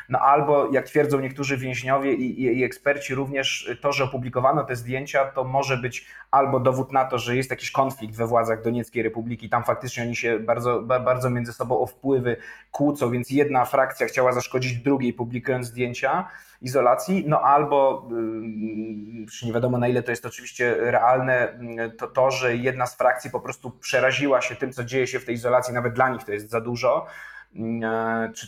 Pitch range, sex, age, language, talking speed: 120-135 Hz, male, 20-39, Polish, 180 wpm